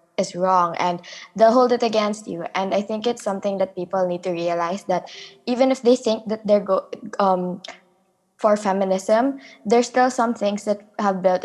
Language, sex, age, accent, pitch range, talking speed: English, female, 20-39, Filipino, 180-205 Hz, 190 wpm